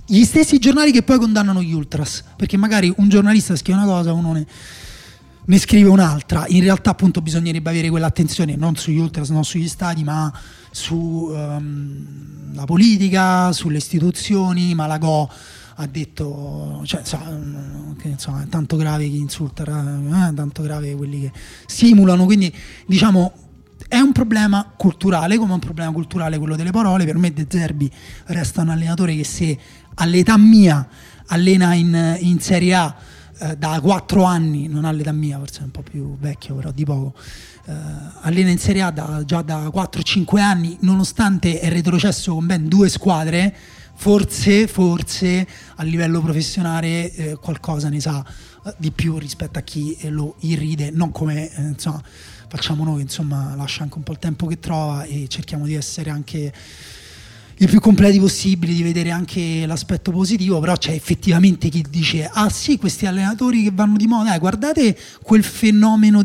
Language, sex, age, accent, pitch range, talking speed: Italian, male, 30-49, native, 150-185 Hz, 165 wpm